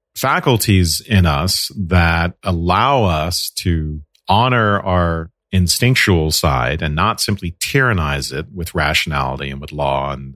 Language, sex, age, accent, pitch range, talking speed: English, male, 40-59, American, 80-100 Hz, 125 wpm